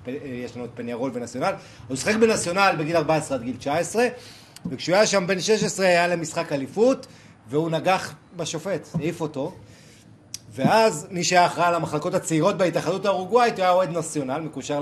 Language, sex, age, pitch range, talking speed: Hebrew, male, 30-49, 145-185 Hz, 160 wpm